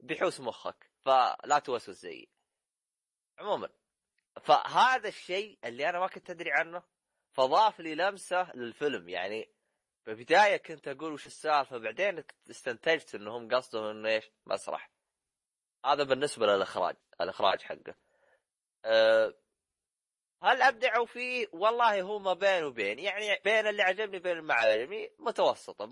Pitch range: 135-220 Hz